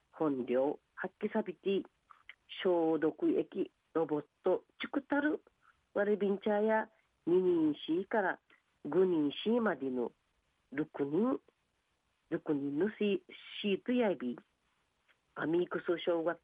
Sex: female